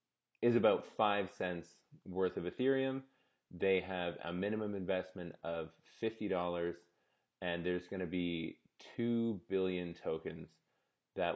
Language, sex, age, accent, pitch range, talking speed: English, male, 20-39, American, 90-110 Hz, 115 wpm